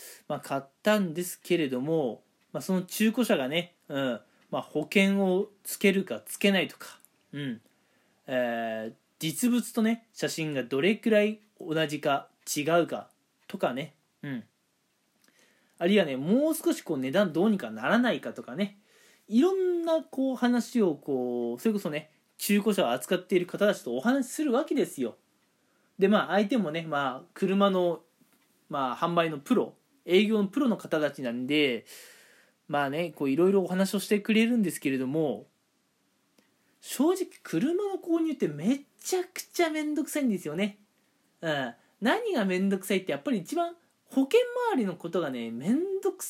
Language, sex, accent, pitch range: Japanese, male, native, 160-270 Hz